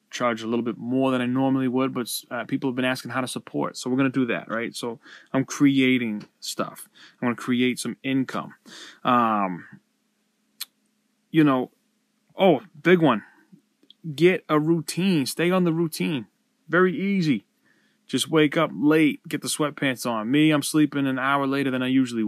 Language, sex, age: English, male, 20-39